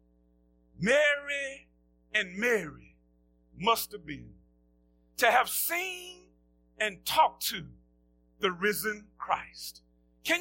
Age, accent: 40-59, American